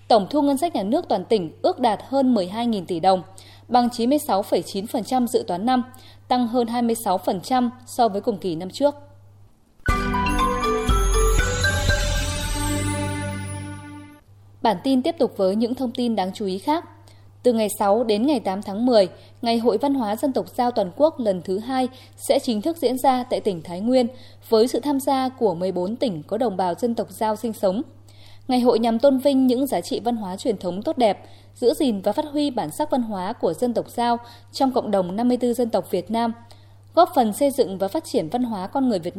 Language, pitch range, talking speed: Vietnamese, 185-255 Hz, 200 wpm